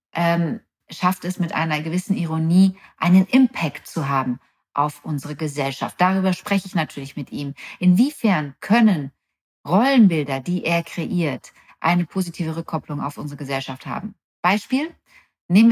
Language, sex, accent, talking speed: German, female, German, 130 wpm